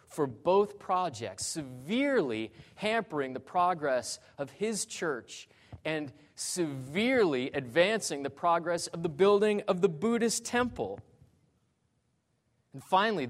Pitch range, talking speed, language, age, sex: 115-155 Hz, 110 wpm, English, 30-49, male